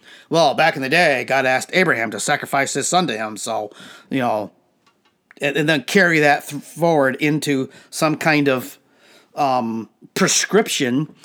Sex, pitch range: male, 145-185 Hz